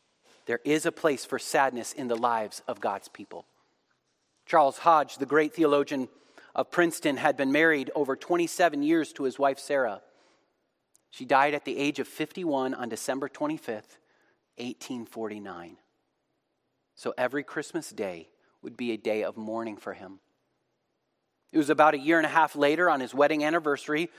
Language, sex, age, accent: English, male, 30-49, American